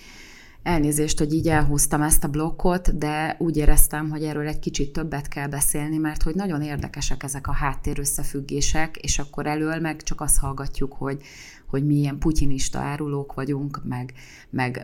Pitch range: 140-155 Hz